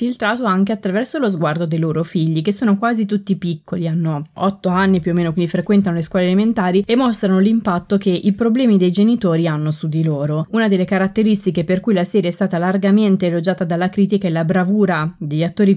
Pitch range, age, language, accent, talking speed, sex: 170-205 Hz, 20-39, Italian, native, 205 wpm, female